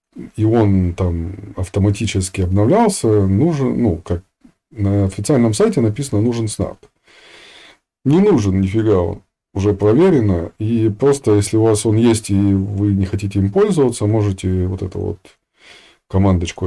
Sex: male